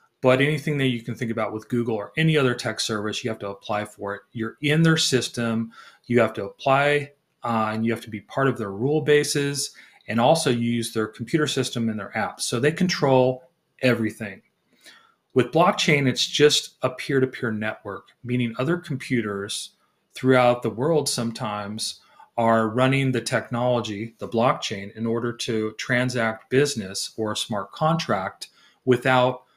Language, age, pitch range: English, 30-49, 110-140 Hz